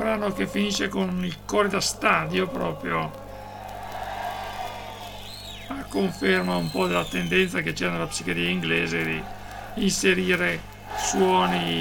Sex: male